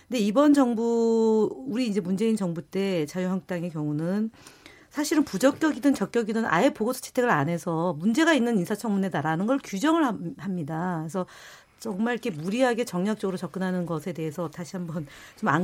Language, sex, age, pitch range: Korean, female, 50-69, 175-235 Hz